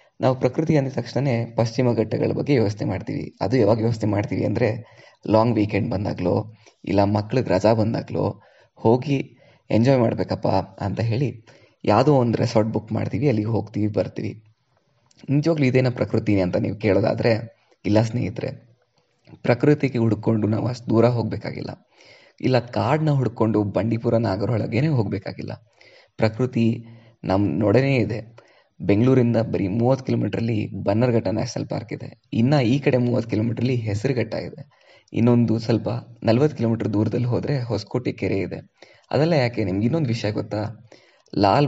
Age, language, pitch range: 20-39, Kannada, 110-130 Hz